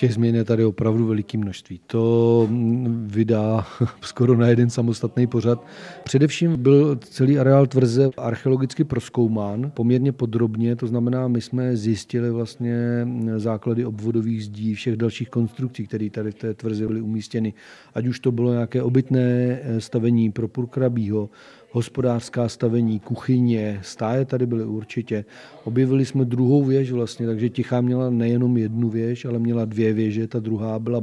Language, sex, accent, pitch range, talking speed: Czech, male, native, 110-125 Hz, 145 wpm